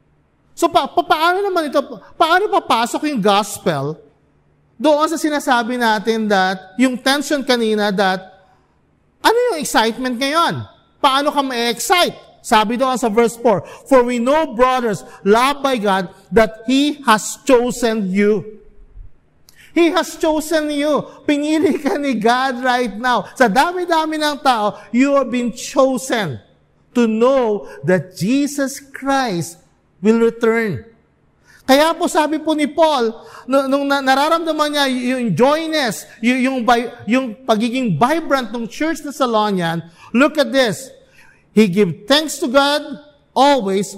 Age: 50-69